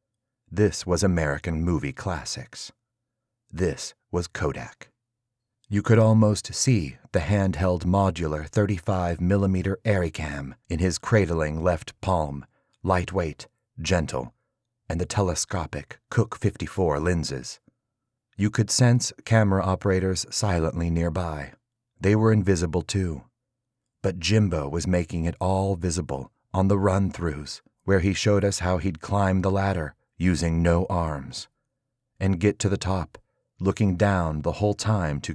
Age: 30-49